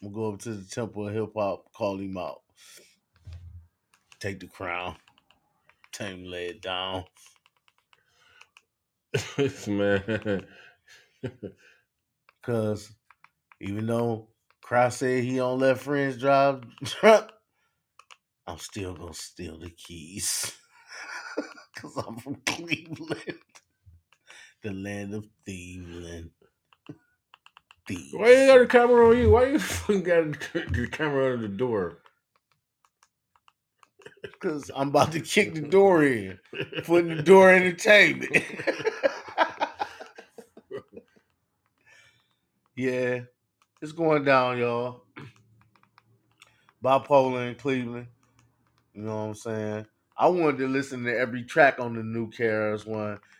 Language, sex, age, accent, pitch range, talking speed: English, male, 30-49, American, 105-145 Hz, 115 wpm